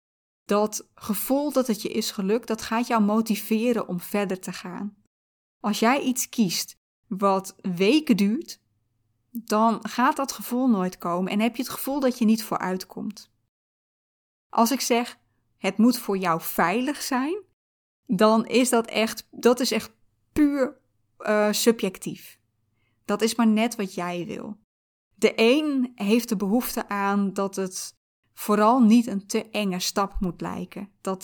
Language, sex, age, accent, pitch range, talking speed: Dutch, female, 20-39, Dutch, 195-235 Hz, 155 wpm